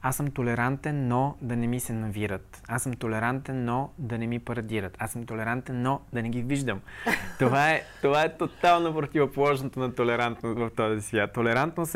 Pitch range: 110-135 Hz